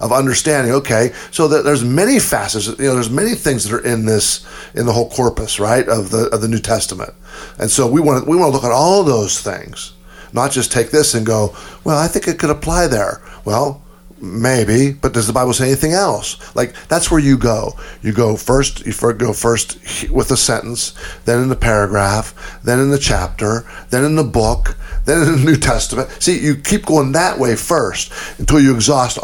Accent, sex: American, male